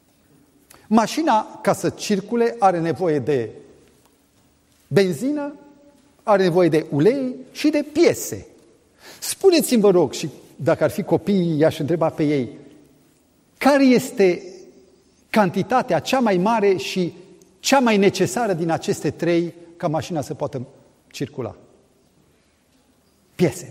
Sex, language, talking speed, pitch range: male, Romanian, 115 wpm, 150-245 Hz